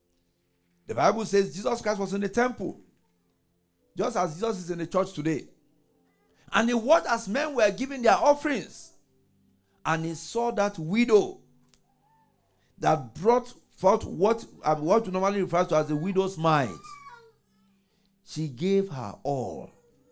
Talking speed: 145 wpm